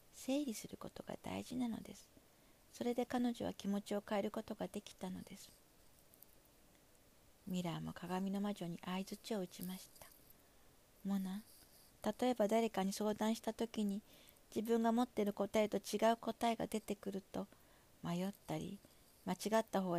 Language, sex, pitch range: Japanese, female, 195-225 Hz